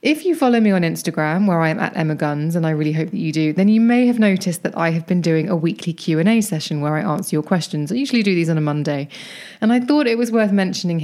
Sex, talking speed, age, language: female, 295 wpm, 20-39, English